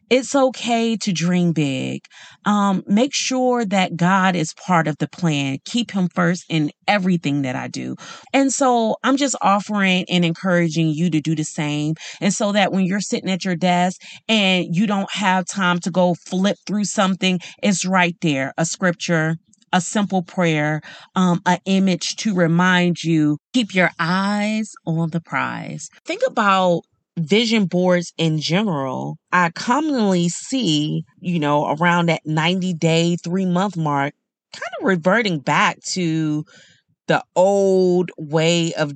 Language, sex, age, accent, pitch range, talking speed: English, female, 30-49, American, 165-210 Hz, 155 wpm